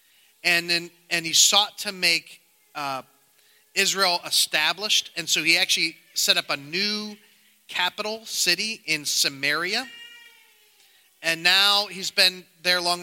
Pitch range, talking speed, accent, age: 150-195 Hz, 130 wpm, American, 30-49